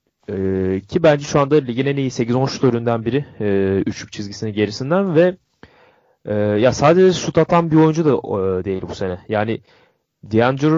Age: 30-49